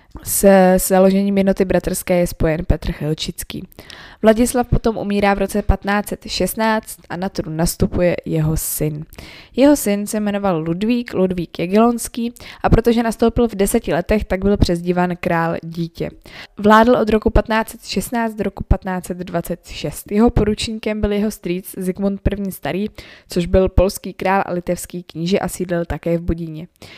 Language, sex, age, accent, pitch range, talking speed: Czech, female, 20-39, native, 175-215 Hz, 145 wpm